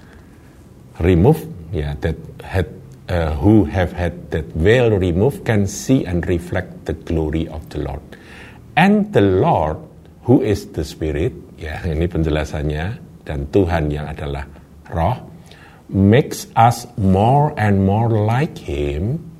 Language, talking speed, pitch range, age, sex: Indonesian, 135 wpm, 80-115 Hz, 50-69, male